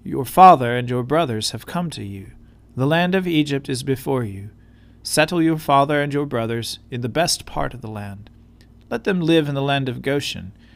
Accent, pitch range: American, 115-145 Hz